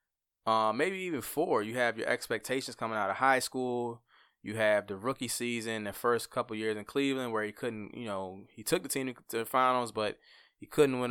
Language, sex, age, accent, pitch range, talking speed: English, male, 20-39, American, 100-120 Hz, 215 wpm